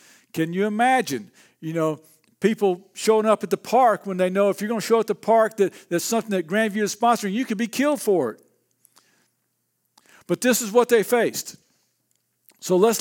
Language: English